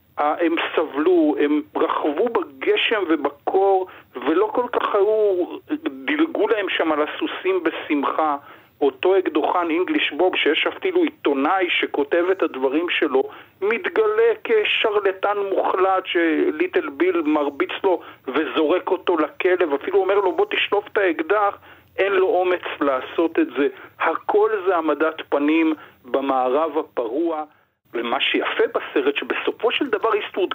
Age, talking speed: 50-69, 120 wpm